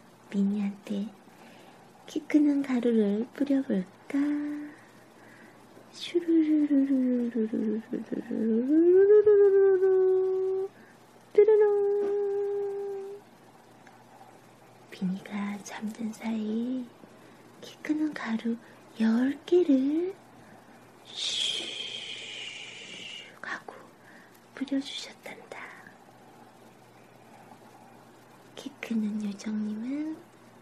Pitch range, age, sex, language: 225-305 Hz, 30-49, female, Korean